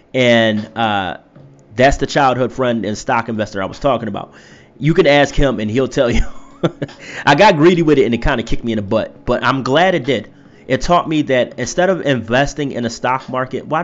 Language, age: English, 20-39